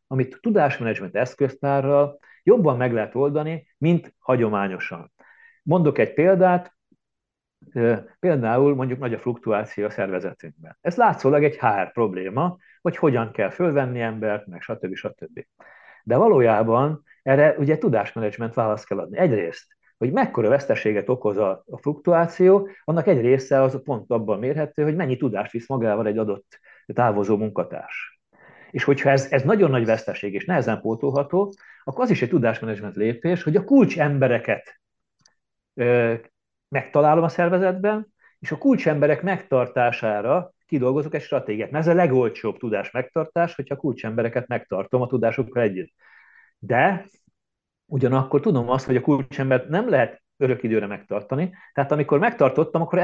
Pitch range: 115-165 Hz